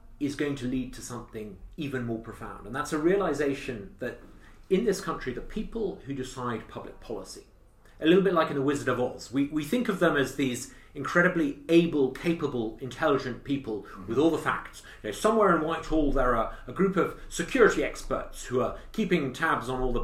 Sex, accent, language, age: male, British, English, 40-59